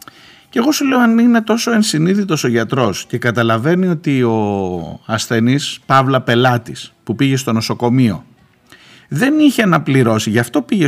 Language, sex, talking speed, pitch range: Greek, male, 150 wpm, 120-195 Hz